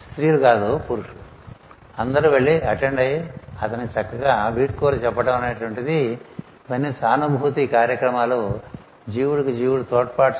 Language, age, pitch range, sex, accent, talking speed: Telugu, 60-79, 110-130 Hz, male, native, 110 wpm